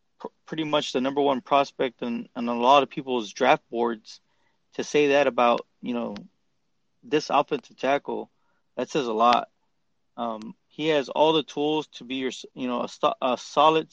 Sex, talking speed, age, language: male, 175 wpm, 20-39, English